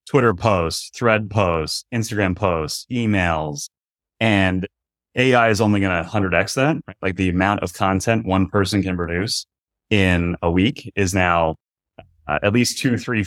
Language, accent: English, American